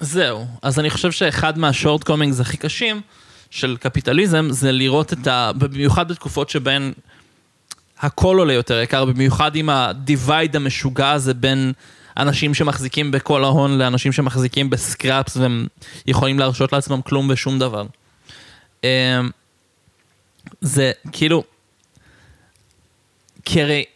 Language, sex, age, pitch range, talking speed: Hebrew, male, 20-39, 130-150 Hz, 115 wpm